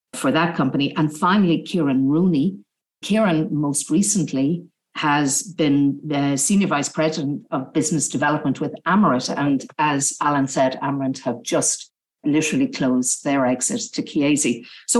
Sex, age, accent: female, 50-69, Irish